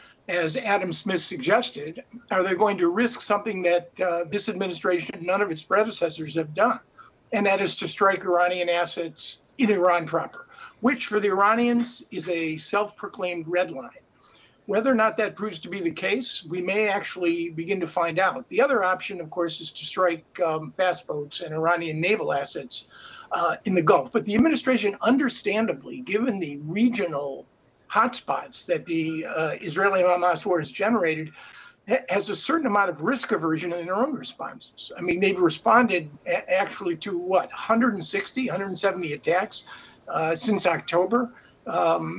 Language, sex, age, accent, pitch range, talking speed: English, male, 50-69, American, 170-215 Hz, 165 wpm